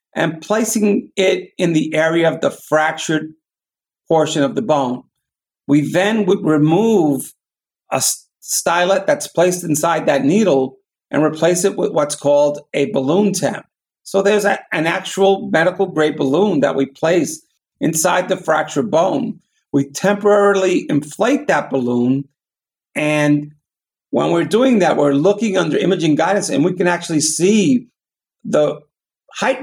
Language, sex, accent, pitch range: English, male, American, 150-195 Hz